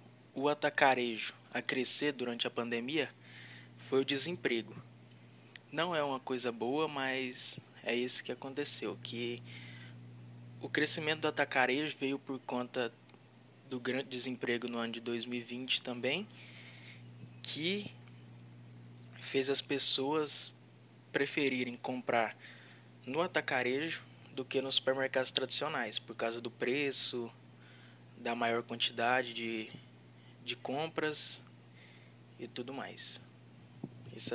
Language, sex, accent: Portuguese, male, Brazilian